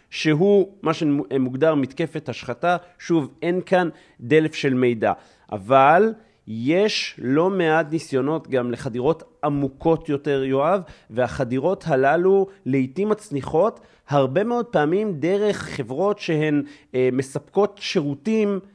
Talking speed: 110 wpm